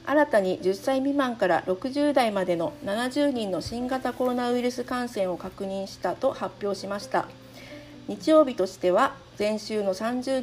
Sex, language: female, Japanese